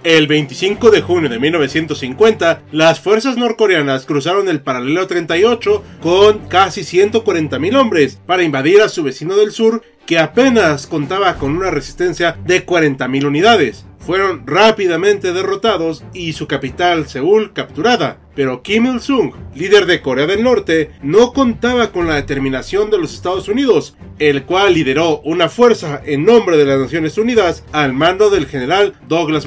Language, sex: Spanish, male